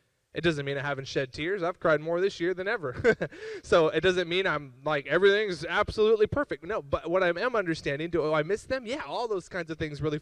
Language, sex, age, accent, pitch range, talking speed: English, male, 20-39, American, 140-190 Hz, 235 wpm